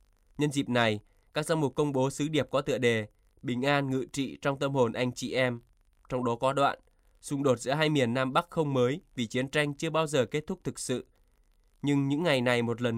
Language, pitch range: Vietnamese, 120-145 Hz